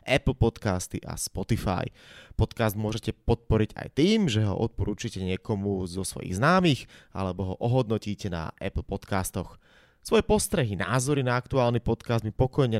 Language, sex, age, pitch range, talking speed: Slovak, male, 20-39, 100-130 Hz, 140 wpm